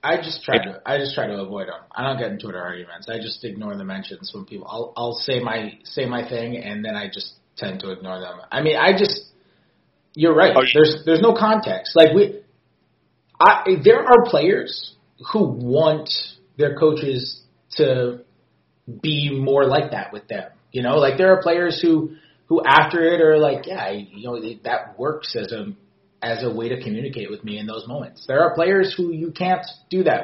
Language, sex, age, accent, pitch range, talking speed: English, male, 30-49, American, 120-165 Hz, 205 wpm